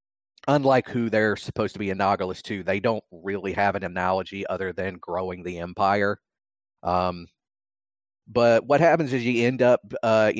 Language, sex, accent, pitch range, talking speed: English, male, American, 100-120 Hz, 160 wpm